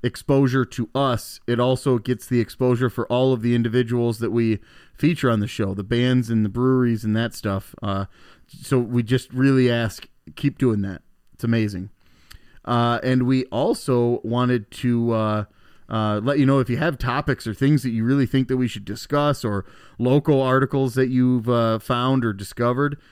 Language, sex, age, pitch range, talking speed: English, male, 30-49, 110-135 Hz, 185 wpm